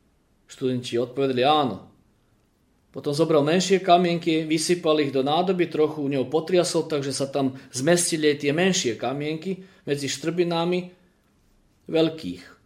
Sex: male